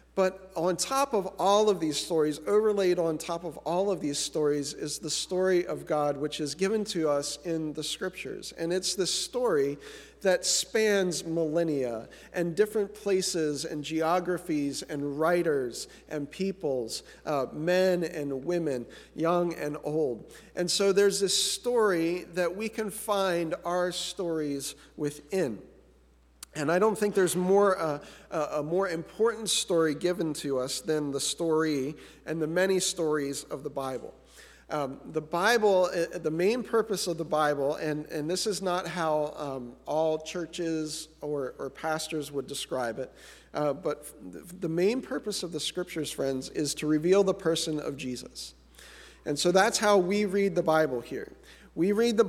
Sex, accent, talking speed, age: male, American, 160 wpm, 50-69